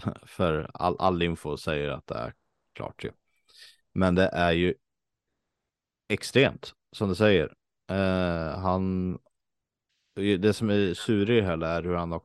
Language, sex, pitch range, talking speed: Swedish, male, 80-95 Hz, 140 wpm